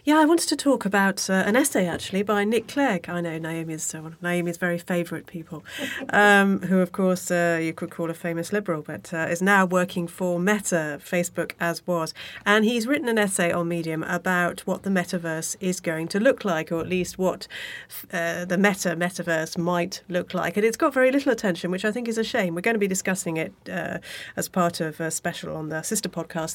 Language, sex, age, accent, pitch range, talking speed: English, female, 30-49, British, 170-205 Hz, 225 wpm